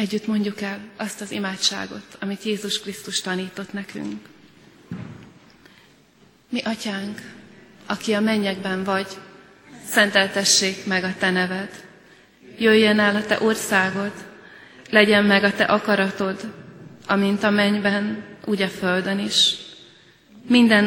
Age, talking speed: 30-49, 115 wpm